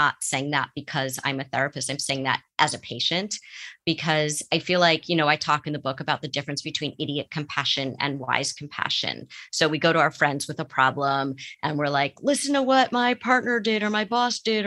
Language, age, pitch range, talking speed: English, 30-49, 150-195 Hz, 230 wpm